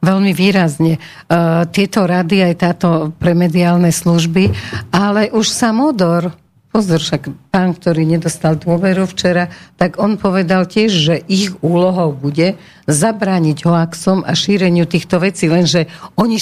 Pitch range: 165-190 Hz